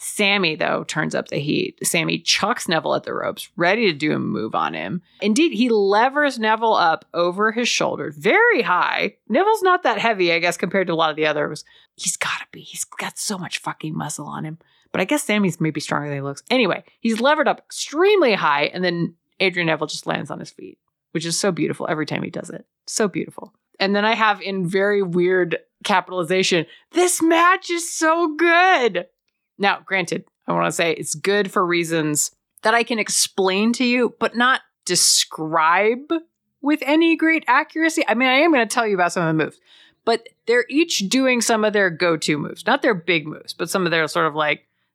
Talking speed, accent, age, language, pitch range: 210 wpm, American, 30-49, English, 170-285 Hz